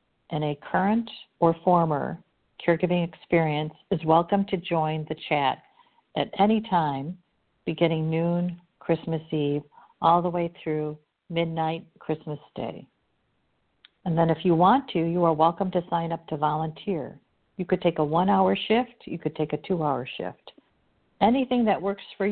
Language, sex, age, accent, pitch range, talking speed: English, female, 50-69, American, 155-190 Hz, 155 wpm